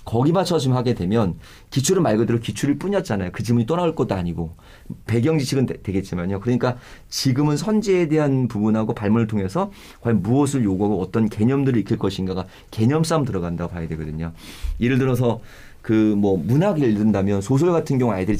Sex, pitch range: male, 100-140 Hz